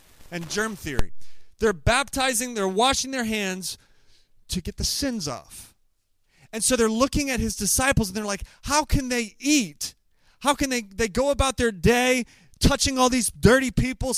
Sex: male